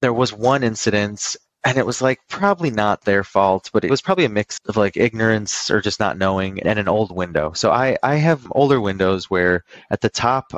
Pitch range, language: 95-120 Hz, English